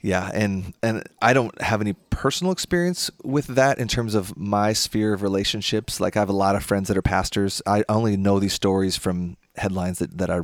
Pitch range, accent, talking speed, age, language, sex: 90-105 Hz, American, 220 wpm, 30-49, English, male